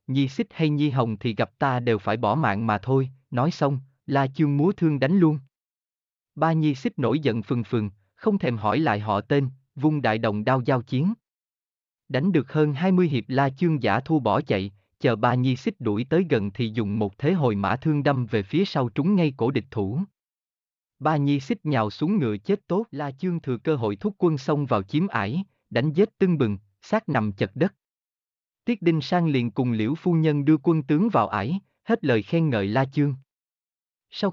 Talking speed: 215 wpm